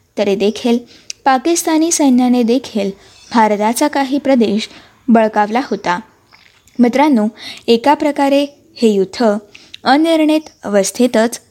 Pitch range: 220-285 Hz